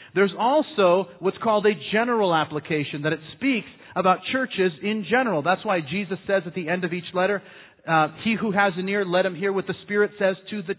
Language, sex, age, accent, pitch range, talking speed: English, male, 40-59, American, 155-205 Hz, 215 wpm